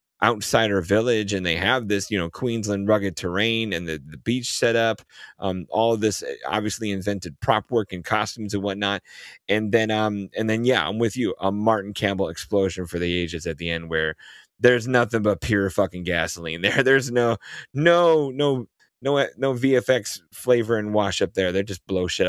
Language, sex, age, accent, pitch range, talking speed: English, male, 30-49, American, 95-120 Hz, 195 wpm